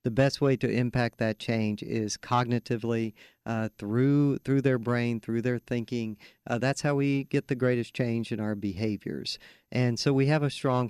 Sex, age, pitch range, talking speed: male, 50-69, 115-135 Hz, 185 wpm